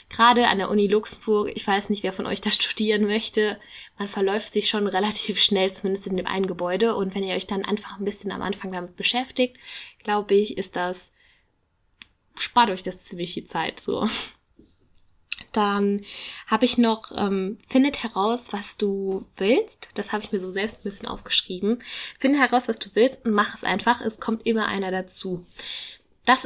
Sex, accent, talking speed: female, German, 185 wpm